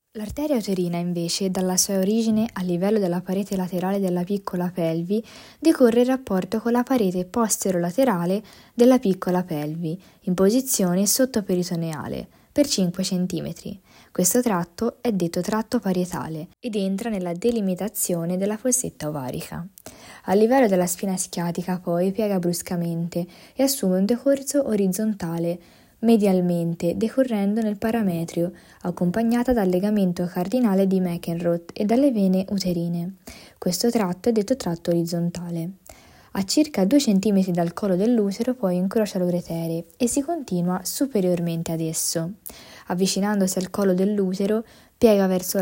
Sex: female